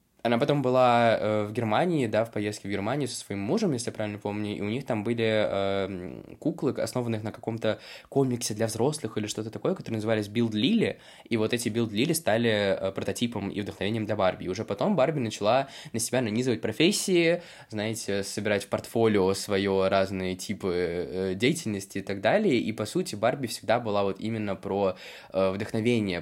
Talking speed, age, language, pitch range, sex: 175 wpm, 20-39, Russian, 95-115 Hz, male